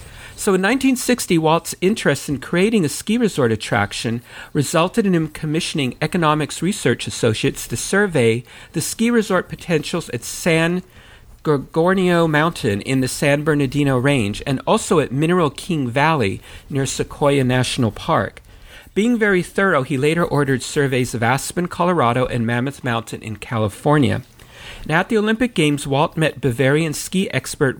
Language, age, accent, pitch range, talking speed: English, 50-69, American, 120-170 Hz, 145 wpm